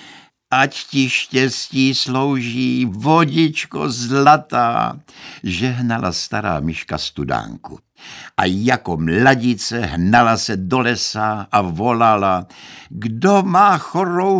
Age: 60-79